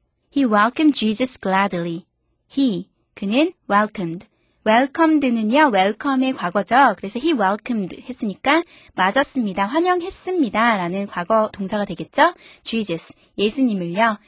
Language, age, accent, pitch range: Korean, 20-39, native, 195-290 Hz